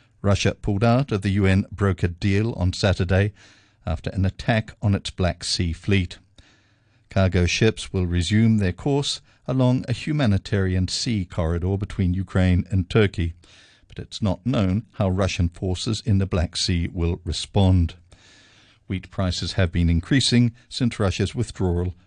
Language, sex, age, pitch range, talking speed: English, male, 50-69, 90-110 Hz, 145 wpm